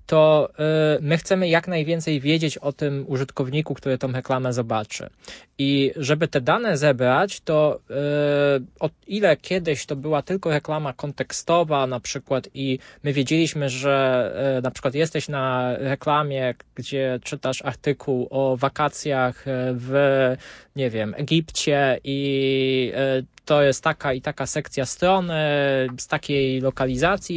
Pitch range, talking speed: 130-150 Hz, 135 wpm